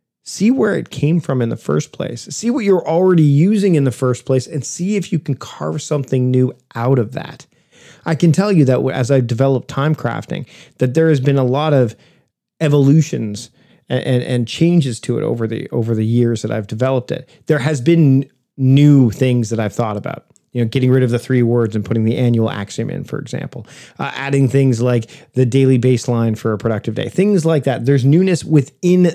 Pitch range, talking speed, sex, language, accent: 115-145 Hz, 215 wpm, male, English, American